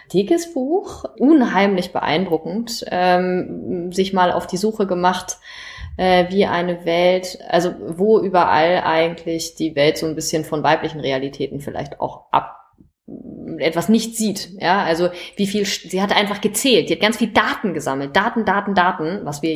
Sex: female